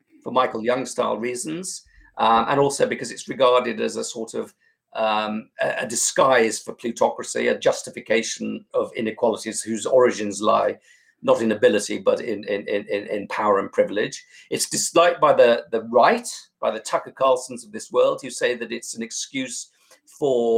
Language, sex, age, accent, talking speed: English, male, 50-69, British, 165 wpm